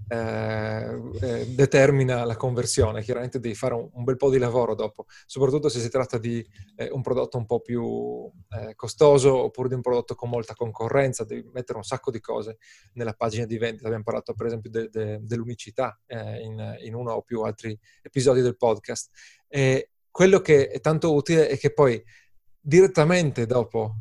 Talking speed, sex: 180 wpm, male